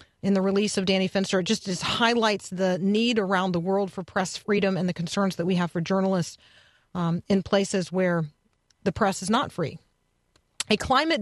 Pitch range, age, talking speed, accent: 190-220 Hz, 40-59, 195 wpm, American